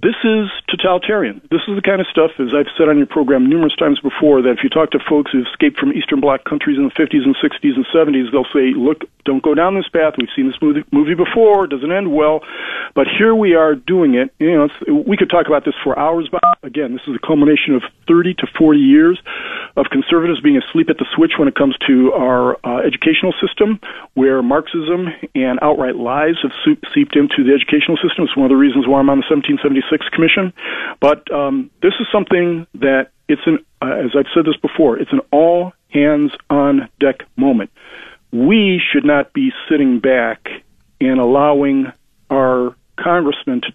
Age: 40-59